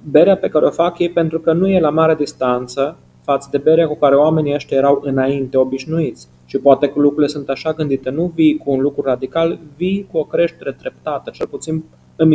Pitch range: 120-150 Hz